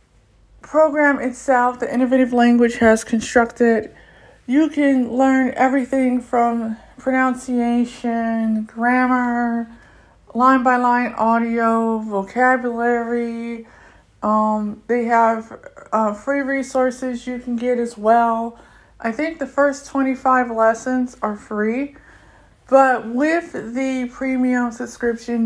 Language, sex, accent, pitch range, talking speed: English, female, American, 230-260 Hz, 100 wpm